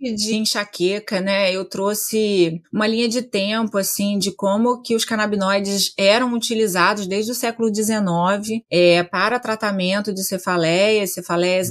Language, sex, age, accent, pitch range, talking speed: Portuguese, female, 30-49, Brazilian, 195-245 Hz, 140 wpm